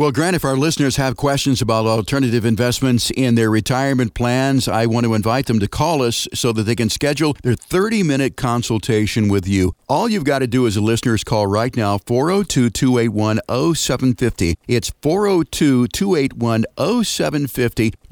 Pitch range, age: 110-135 Hz, 50-69